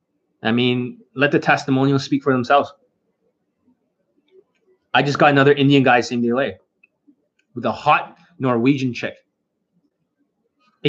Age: 20-39